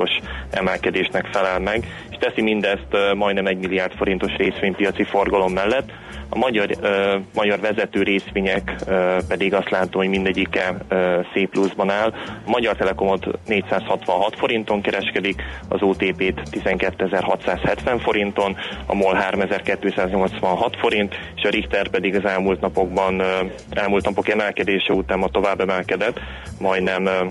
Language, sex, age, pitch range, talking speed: Hungarian, male, 20-39, 95-100 Hz, 120 wpm